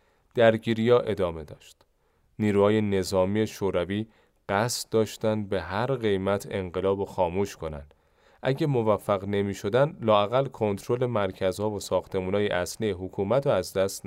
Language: Persian